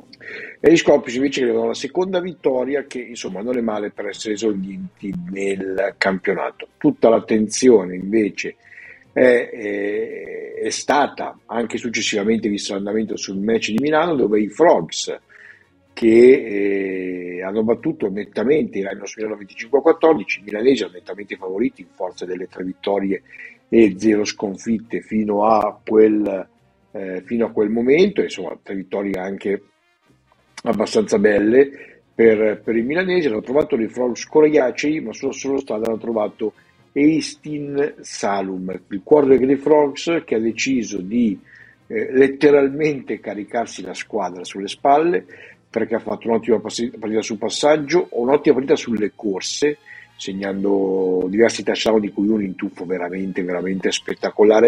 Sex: male